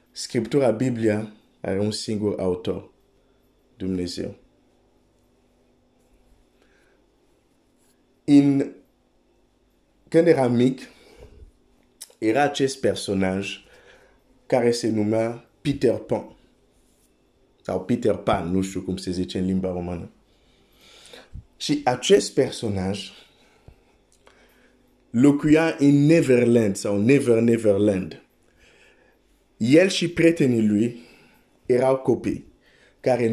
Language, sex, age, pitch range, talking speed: Romanian, male, 50-69, 105-145 Hz, 85 wpm